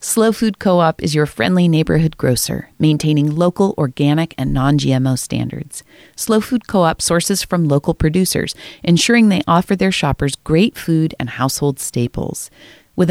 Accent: American